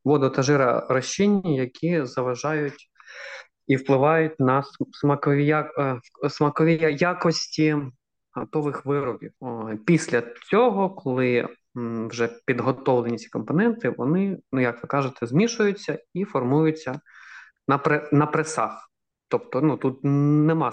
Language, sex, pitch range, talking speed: Ukrainian, male, 130-160 Hz, 95 wpm